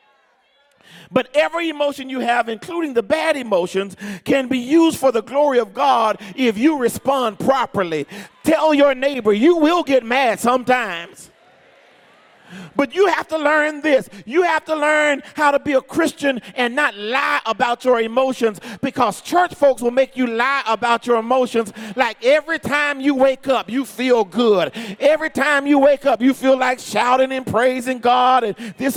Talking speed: 170 wpm